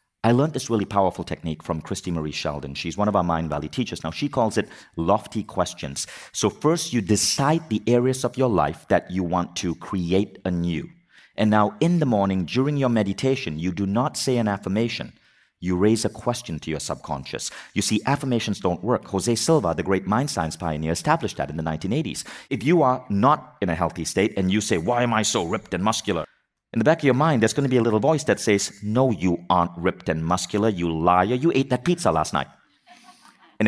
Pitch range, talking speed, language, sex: 90-130 Hz, 220 wpm, English, male